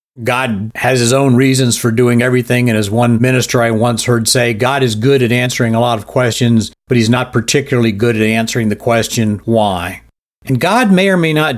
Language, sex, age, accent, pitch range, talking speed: English, male, 50-69, American, 110-130 Hz, 210 wpm